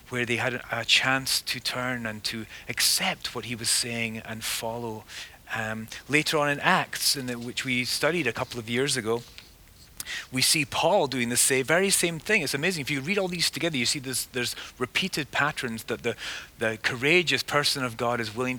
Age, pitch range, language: 30-49, 115-155 Hz, English